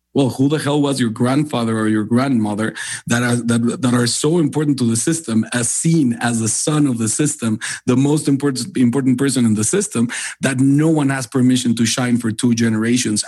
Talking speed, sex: 200 wpm, male